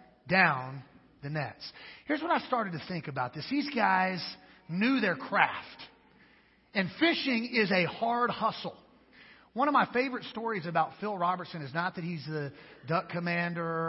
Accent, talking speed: American, 160 wpm